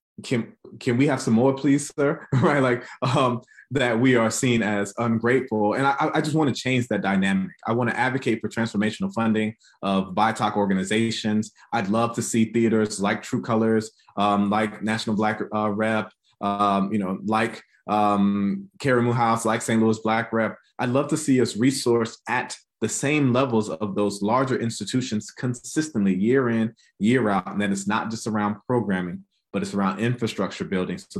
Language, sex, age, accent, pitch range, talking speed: English, male, 20-39, American, 105-125 Hz, 180 wpm